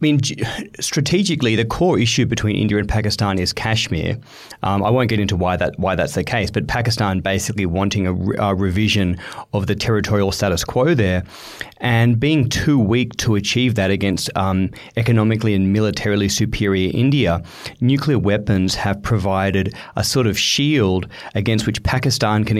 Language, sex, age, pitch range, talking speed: English, male, 30-49, 95-120 Hz, 170 wpm